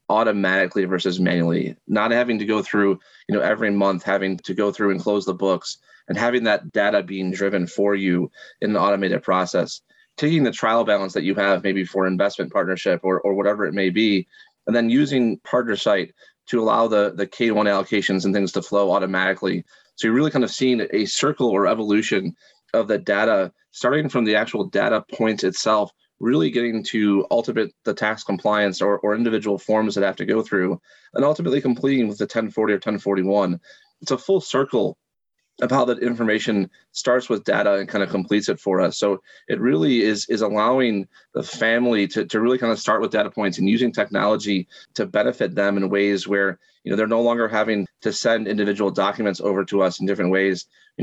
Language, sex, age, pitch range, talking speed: English, male, 30-49, 95-110 Hz, 200 wpm